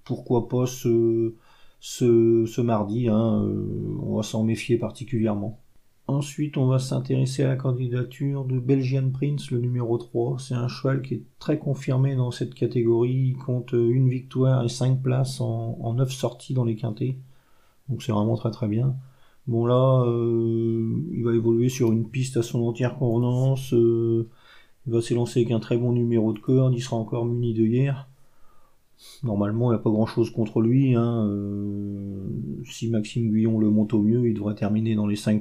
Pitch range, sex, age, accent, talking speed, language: 110-125 Hz, male, 40-59, French, 185 wpm, French